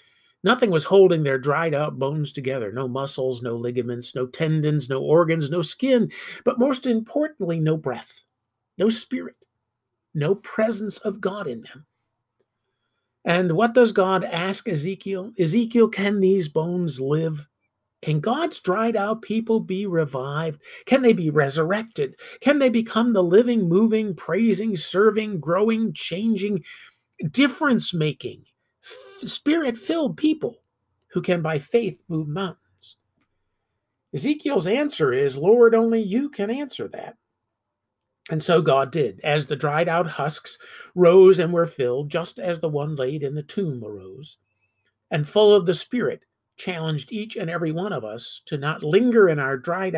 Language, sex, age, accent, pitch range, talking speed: English, male, 50-69, American, 140-220 Hz, 145 wpm